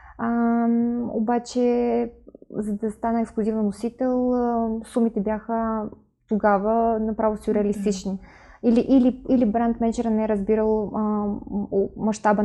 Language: Bulgarian